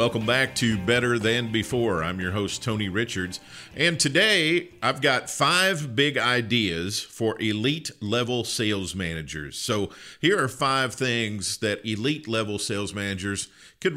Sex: male